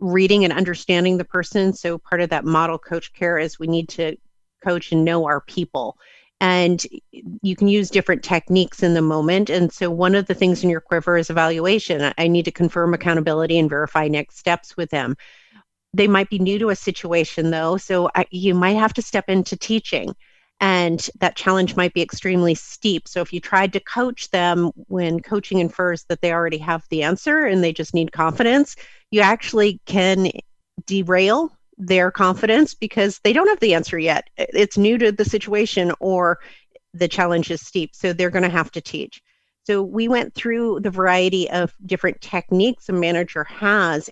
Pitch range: 170-200 Hz